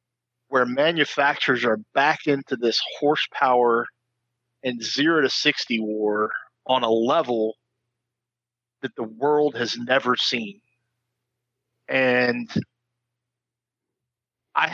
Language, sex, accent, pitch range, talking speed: English, male, American, 120-135 Hz, 95 wpm